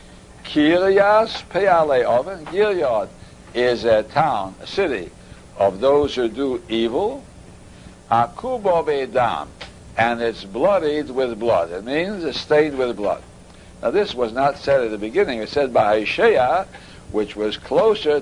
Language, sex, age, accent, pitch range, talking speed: English, male, 60-79, American, 115-165 Hz, 130 wpm